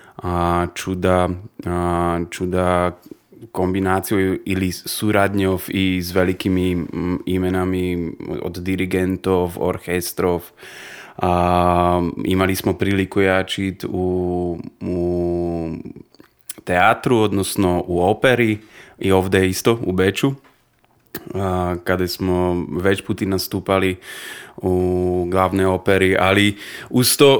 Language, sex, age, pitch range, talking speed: Croatian, male, 20-39, 90-105 Hz, 85 wpm